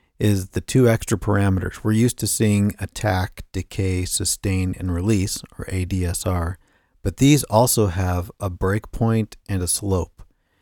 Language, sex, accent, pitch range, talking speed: English, male, American, 95-110 Hz, 140 wpm